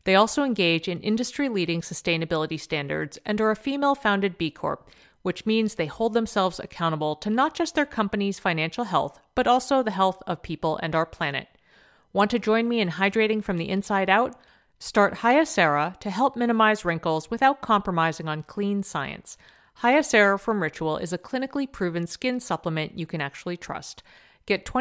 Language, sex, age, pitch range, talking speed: English, female, 40-59, 165-235 Hz, 175 wpm